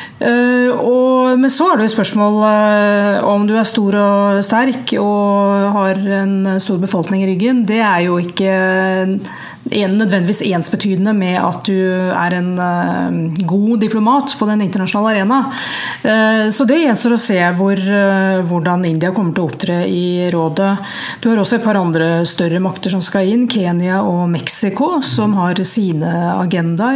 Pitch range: 185-230 Hz